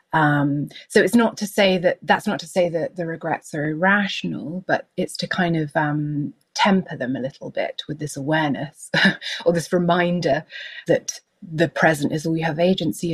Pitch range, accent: 150-180 Hz, British